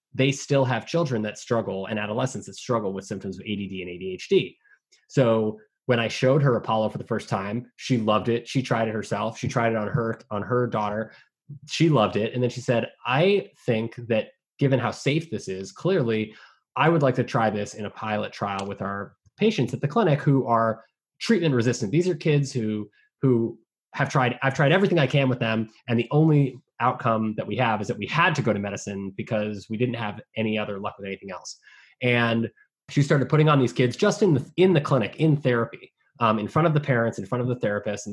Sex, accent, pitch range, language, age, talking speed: male, American, 110-140 Hz, English, 20-39, 225 wpm